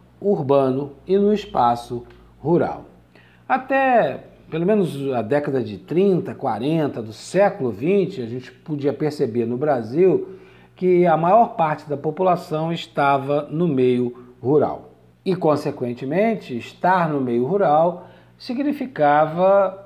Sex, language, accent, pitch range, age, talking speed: male, Portuguese, Brazilian, 125-185 Hz, 50-69, 120 wpm